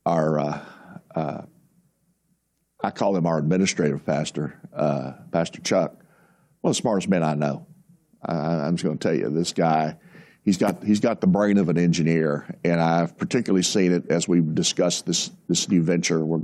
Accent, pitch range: American, 80-115 Hz